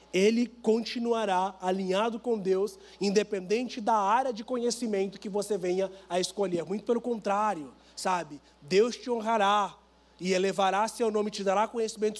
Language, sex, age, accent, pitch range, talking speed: Portuguese, male, 20-39, Brazilian, 200-235 Hz, 145 wpm